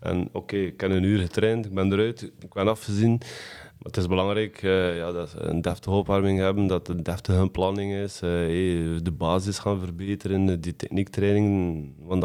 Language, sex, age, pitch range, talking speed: Dutch, male, 20-39, 90-100 Hz, 190 wpm